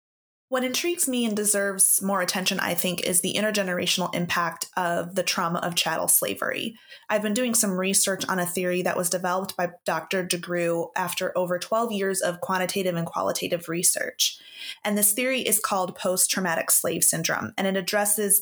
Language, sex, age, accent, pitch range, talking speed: English, female, 20-39, American, 175-195 Hz, 175 wpm